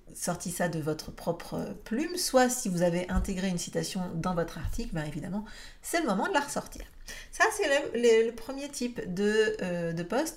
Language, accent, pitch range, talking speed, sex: French, French, 175-230 Hz, 205 wpm, female